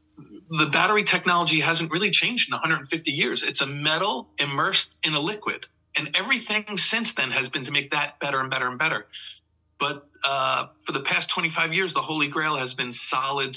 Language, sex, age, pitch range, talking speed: English, male, 40-59, 130-170 Hz, 190 wpm